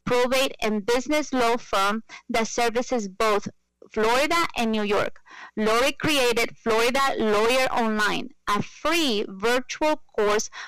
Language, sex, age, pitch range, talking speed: English, female, 30-49, 225-285 Hz, 120 wpm